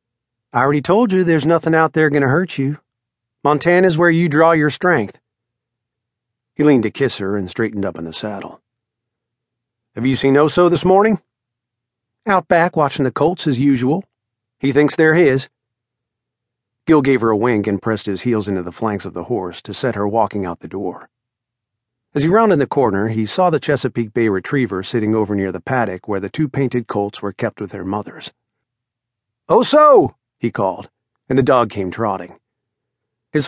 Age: 40-59